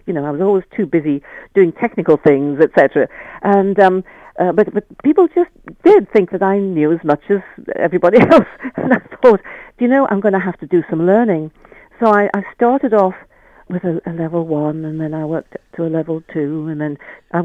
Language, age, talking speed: English, 60-79, 215 wpm